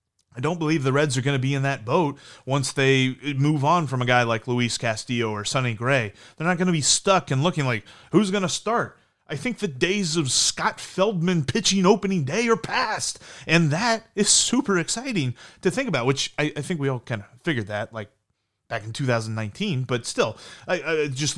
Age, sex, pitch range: 30-49, male, 125-180 Hz